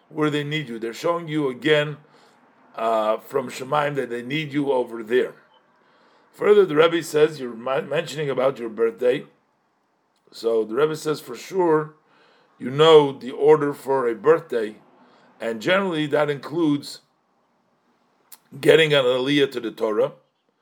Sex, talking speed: male, 145 wpm